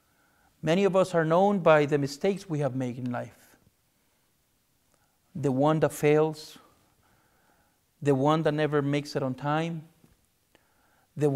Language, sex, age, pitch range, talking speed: English, male, 50-69, 130-180 Hz, 135 wpm